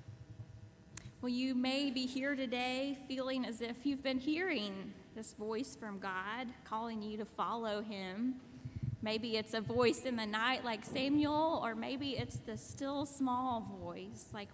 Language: English